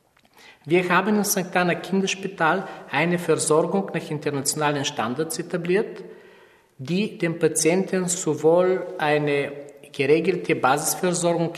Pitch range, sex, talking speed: 145-180 Hz, male, 100 wpm